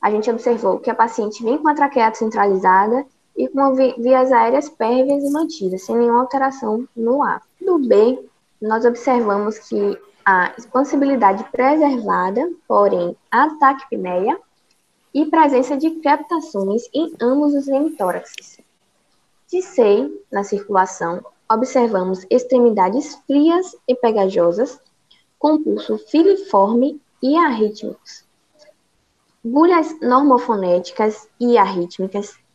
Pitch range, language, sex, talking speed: 205-275 Hz, Portuguese, female, 110 wpm